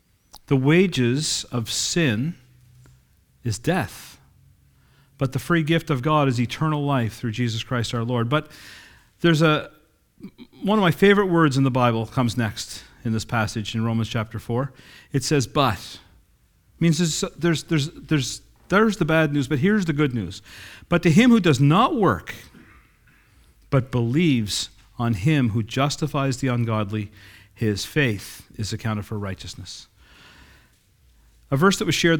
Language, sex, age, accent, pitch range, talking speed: English, male, 40-59, American, 115-145 Hz, 155 wpm